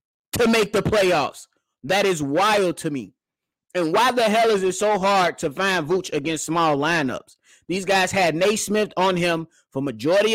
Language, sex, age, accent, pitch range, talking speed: English, male, 30-49, American, 170-225 Hz, 180 wpm